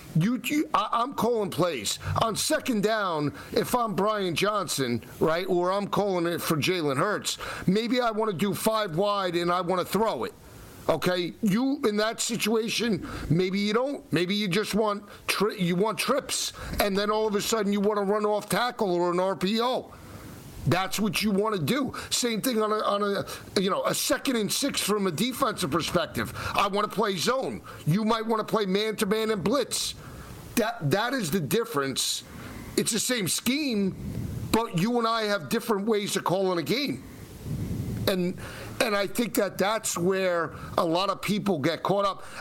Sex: male